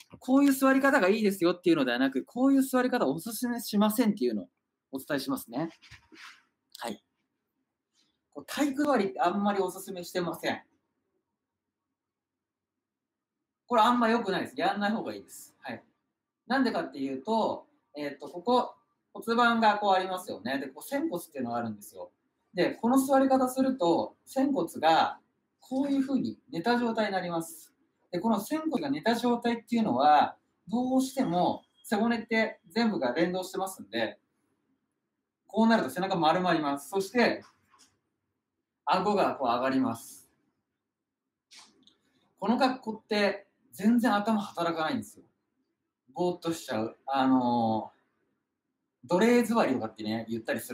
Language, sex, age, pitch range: Japanese, male, 40-59, 175-255 Hz